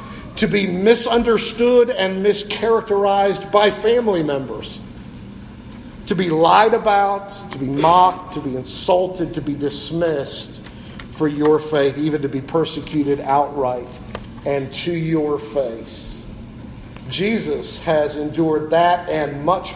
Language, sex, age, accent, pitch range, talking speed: English, male, 50-69, American, 140-200 Hz, 120 wpm